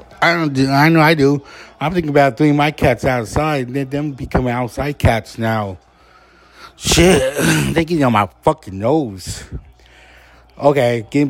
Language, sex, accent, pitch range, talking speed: English, male, American, 105-140 Hz, 155 wpm